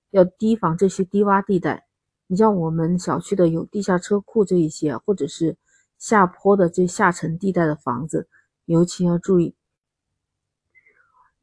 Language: Chinese